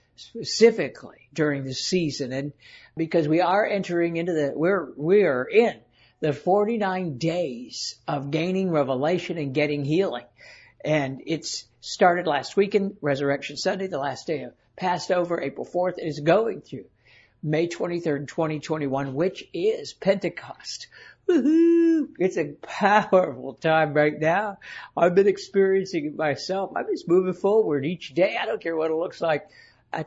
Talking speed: 150 wpm